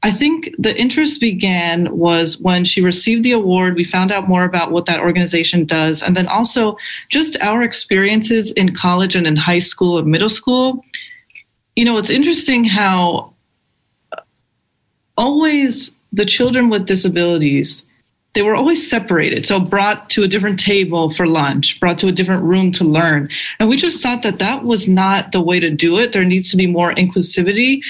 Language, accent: English, American